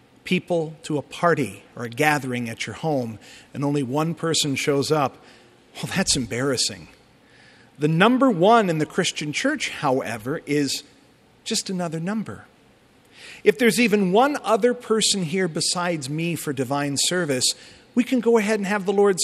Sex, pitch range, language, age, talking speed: male, 145-210 Hz, English, 50-69, 160 wpm